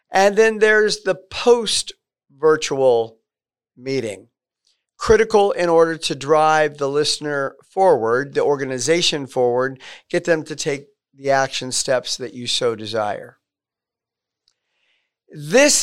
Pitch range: 145-200 Hz